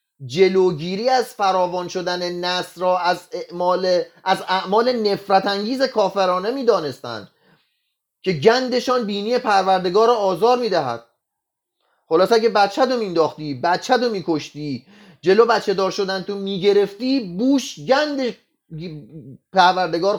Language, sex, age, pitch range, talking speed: Persian, male, 30-49, 180-240 Hz, 115 wpm